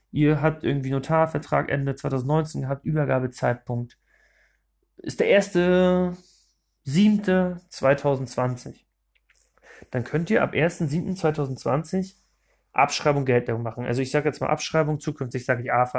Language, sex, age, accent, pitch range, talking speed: German, male, 30-49, German, 130-180 Hz, 110 wpm